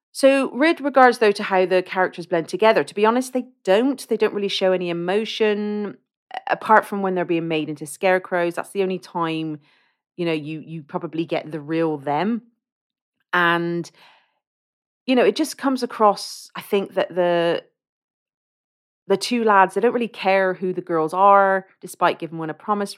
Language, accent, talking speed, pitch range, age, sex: English, British, 180 wpm, 155-205 Hz, 30-49, female